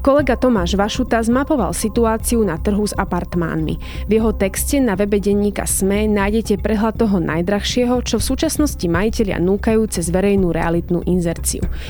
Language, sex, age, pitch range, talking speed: Slovak, female, 20-39, 185-230 Hz, 145 wpm